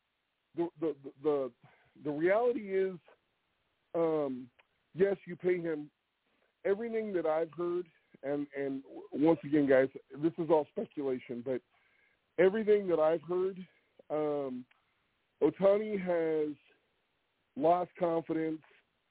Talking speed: 105 wpm